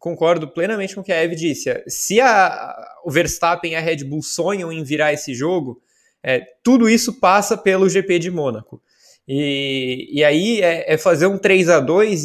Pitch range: 170-210 Hz